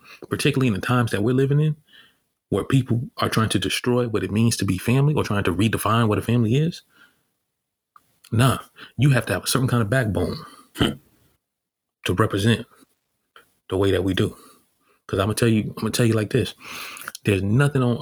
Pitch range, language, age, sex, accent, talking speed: 105-125 Hz, English, 30-49, male, American, 195 wpm